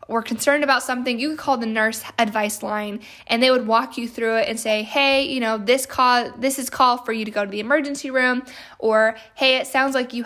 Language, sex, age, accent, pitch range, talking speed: English, female, 10-29, American, 215-255 Hz, 245 wpm